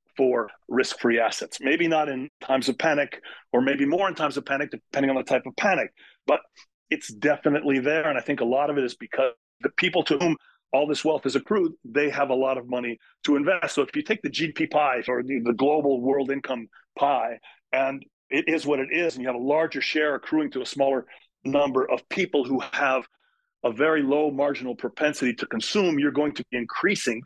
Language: English